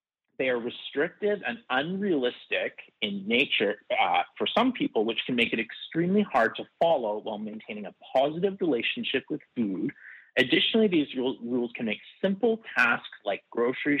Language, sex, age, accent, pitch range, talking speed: English, male, 30-49, American, 120-180 Hz, 150 wpm